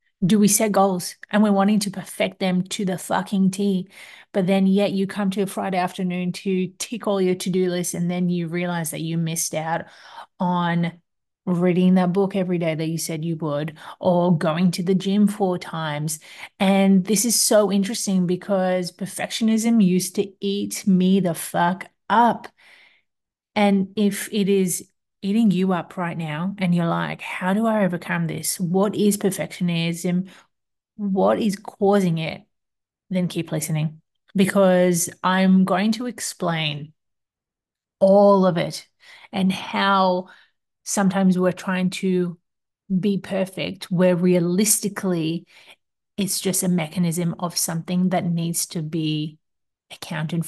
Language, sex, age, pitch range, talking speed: English, female, 30-49, 170-195 Hz, 150 wpm